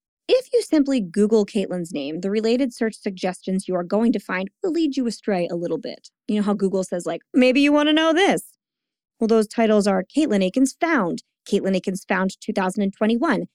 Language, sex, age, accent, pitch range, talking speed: English, female, 20-39, American, 190-250 Hz, 200 wpm